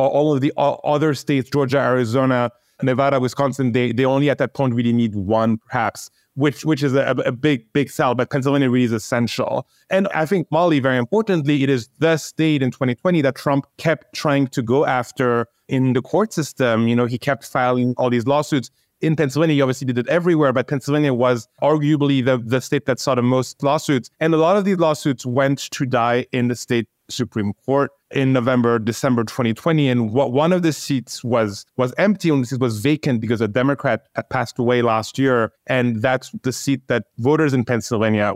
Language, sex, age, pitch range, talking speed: English, male, 30-49, 120-150 Hz, 200 wpm